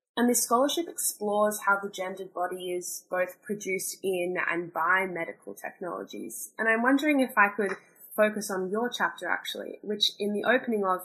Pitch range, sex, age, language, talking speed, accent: 180-220 Hz, female, 10-29, English, 175 wpm, Australian